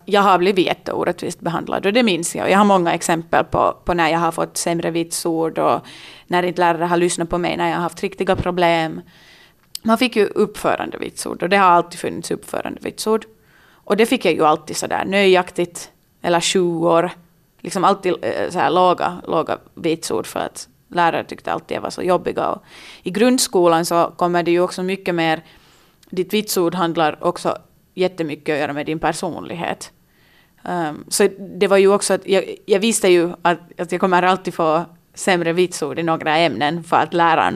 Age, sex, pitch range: 30-49, female, 165-190 Hz